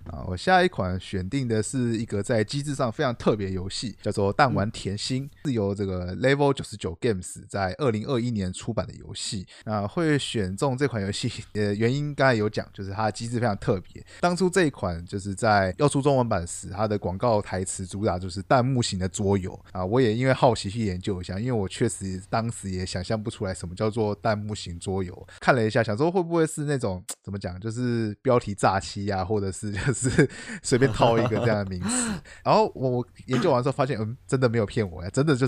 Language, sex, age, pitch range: Chinese, male, 20-39, 100-125 Hz